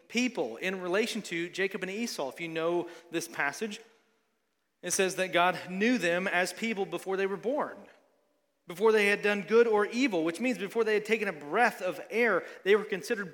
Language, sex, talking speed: English, male, 200 wpm